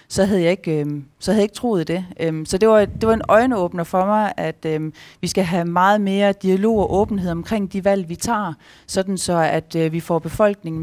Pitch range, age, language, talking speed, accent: 165-200 Hz, 30-49, Danish, 235 wpm, native